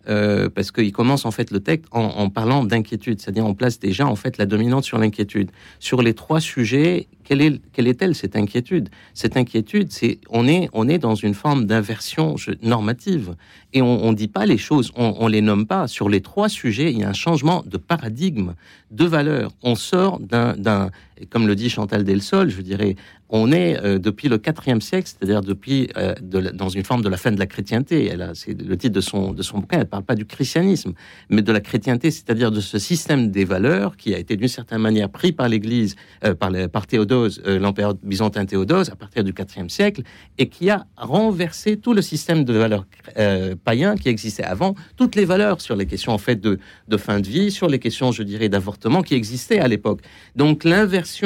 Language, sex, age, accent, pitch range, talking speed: French, male, 50-69, French, 100-150 Hz, 220 wpm